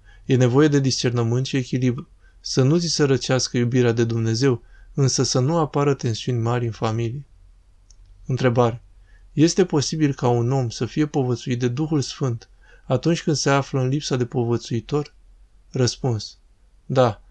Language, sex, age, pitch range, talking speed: Romanian, male, 20-39, 120-140 Hz, 155 wpm